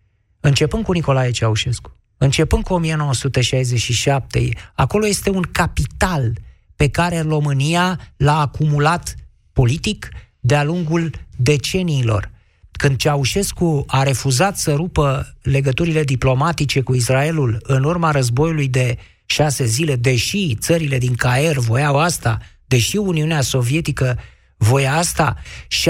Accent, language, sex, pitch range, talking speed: native, Romanian, male, 125-165 Hz, 110 wpm